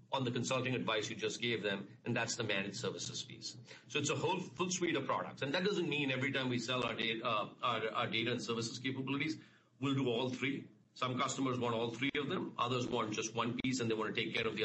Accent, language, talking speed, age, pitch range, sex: Indian, English, 245 wpm, 50-69, 115-130 Hz, male